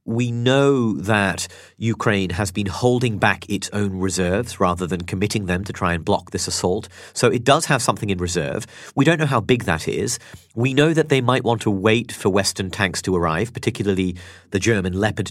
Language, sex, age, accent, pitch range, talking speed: English, male, 40-59, British, 95-135 Hz, 205 wpm